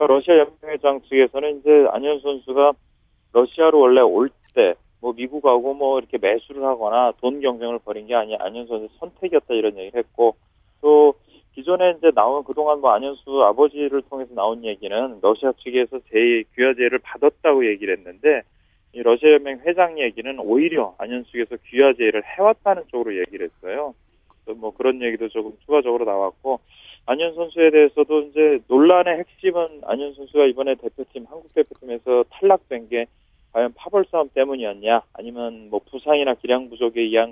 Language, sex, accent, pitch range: Korean, male, native, 115-155 Hz